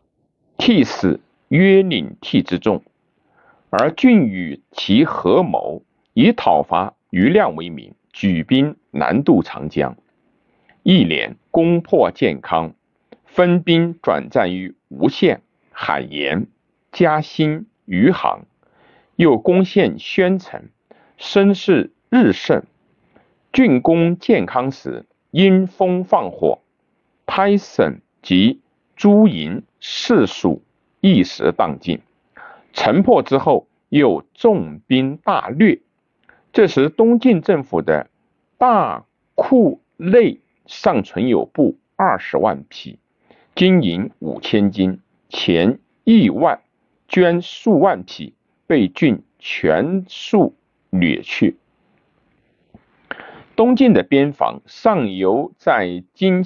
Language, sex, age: Chinese, male, 50-69